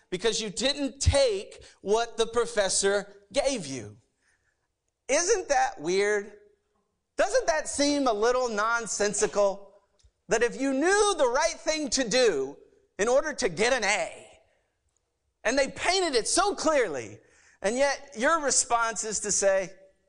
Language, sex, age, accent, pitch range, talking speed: English, male, 50-69, American, 200-285 Hz, 135 wpm